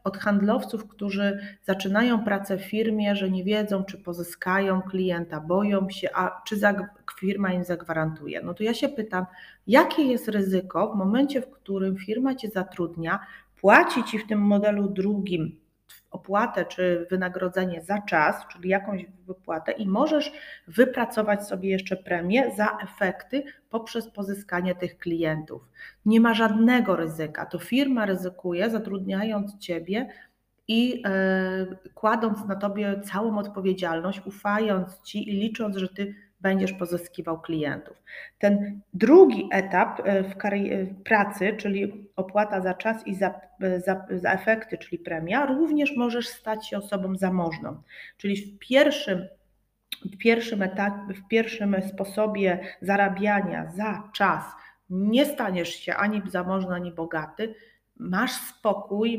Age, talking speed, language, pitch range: 30-49, 130 wpm, Polish, 185-215 Hz